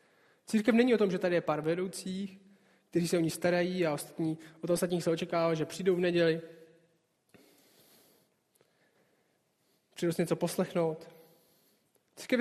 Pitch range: 165-195 Hz